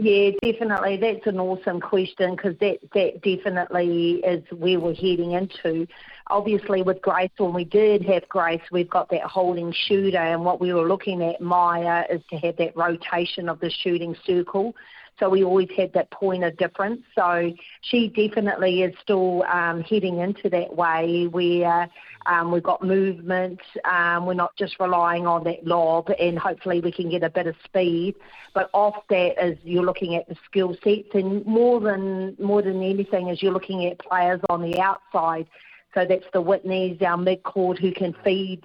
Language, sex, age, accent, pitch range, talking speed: English, female, 40-59, Australian, 175-200 Hz, 180 wpm